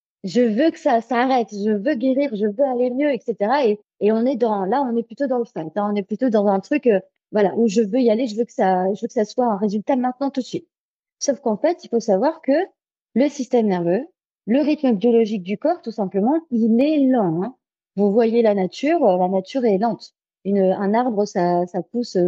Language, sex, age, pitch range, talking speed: French, female, 30-49, 200-265 Hz, 240 wpm